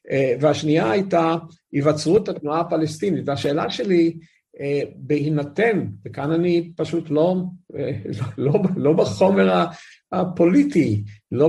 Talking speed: 95 wpm